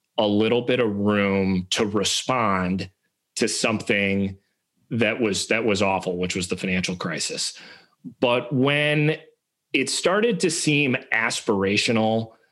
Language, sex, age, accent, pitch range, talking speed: English, male, 30-49, American, 105-120 Hz, 125 wpm